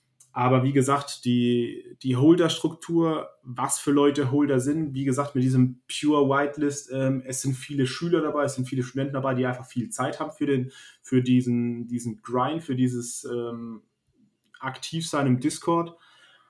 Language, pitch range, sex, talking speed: German, 125-145 Hz, male, 155 wpm